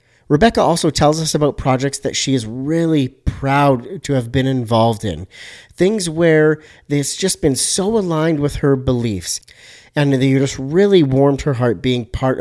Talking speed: 170 wpm